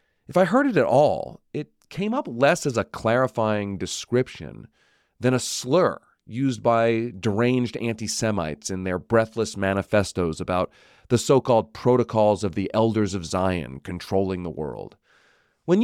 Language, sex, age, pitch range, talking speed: English, male, 40-59, 95-130 Hz, 145 wpm